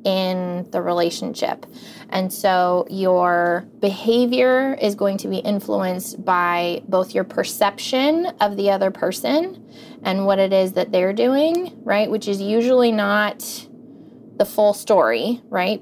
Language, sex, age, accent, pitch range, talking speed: English, female, 20-39, American, 185-235 Hz, 135 wpm